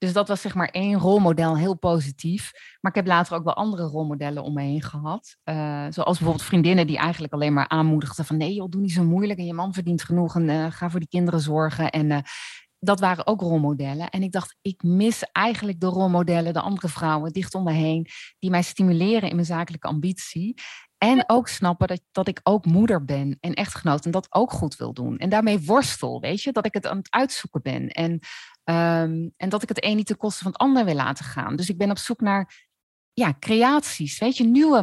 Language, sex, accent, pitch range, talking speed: Dutch, female, Dutch, 160-215 Hz, 230 wpm